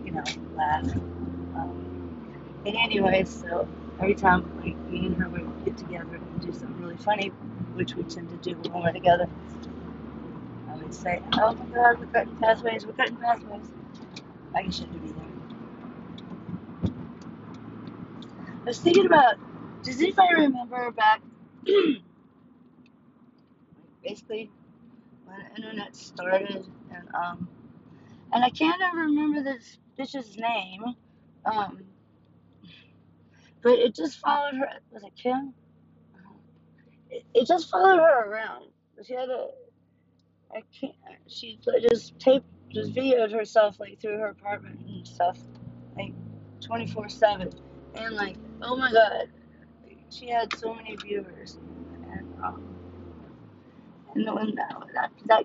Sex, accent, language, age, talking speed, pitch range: female, American, English, 40-59, 130 wpm, 190-250 Hz